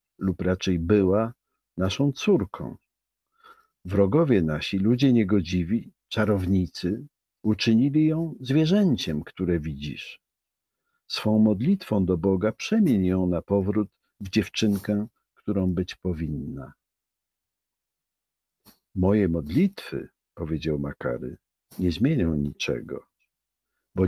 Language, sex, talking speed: Polish, male, 90 wpm